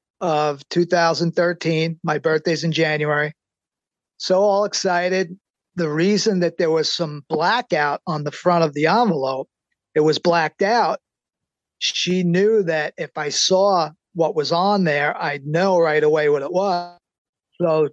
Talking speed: 145 wpm